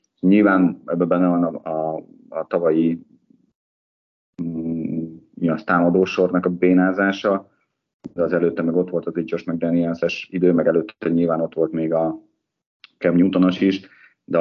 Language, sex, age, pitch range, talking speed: Hungarian, male, 30-49, 80-90 Hz, 135 wpm